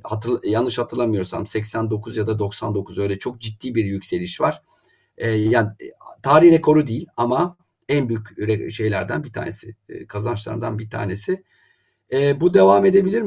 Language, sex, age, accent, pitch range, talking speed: Turkish, male, 50-69, native, 105-140 Hz, 140 wpm